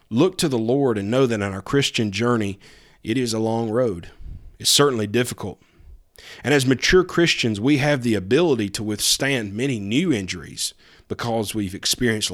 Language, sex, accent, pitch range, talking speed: English, male, American, 100-125 Hz, 170 wpm